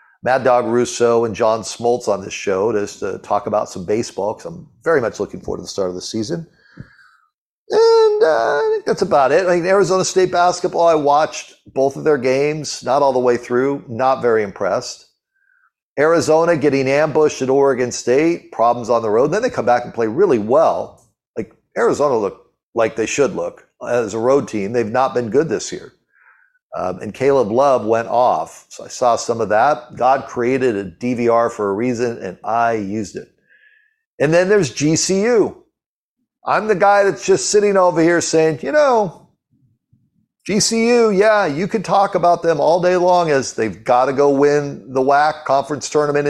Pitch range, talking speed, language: 125-195 Hz, 190 wpm, English